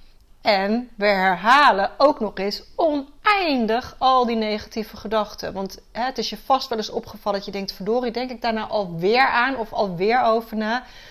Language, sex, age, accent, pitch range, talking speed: Dutch, female, 30-49, Dutch, 200-250 Hz, 185 wpm